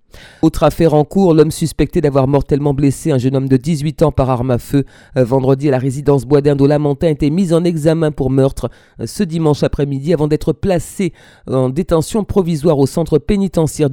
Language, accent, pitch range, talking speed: French, French, 130-160 Hz, 195 wpm